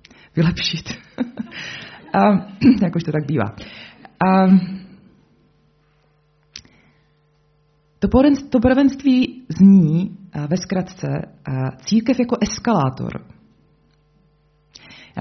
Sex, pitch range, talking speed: female, 150-200 Hz, 65 wpm